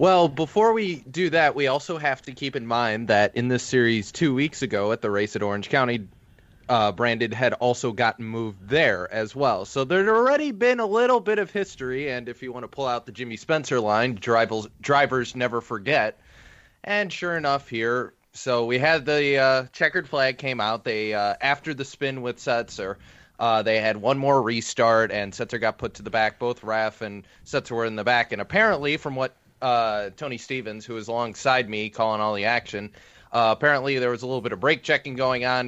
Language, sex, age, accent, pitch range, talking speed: English, male, 30-49, American, 110-140 Hz, 210 wpm